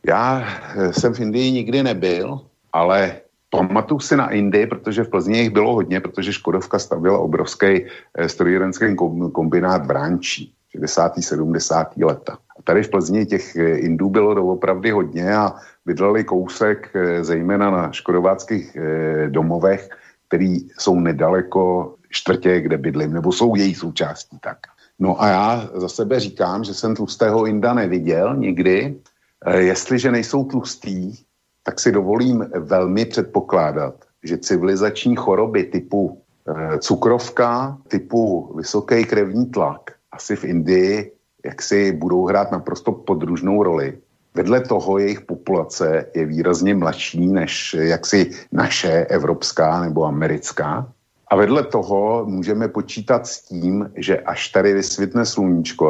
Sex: male